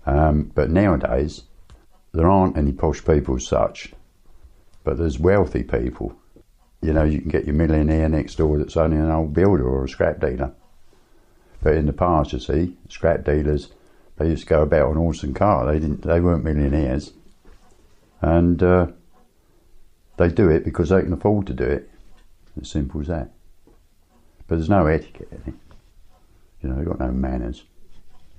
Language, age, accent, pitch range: English, 60-79, British, 70-85 Hz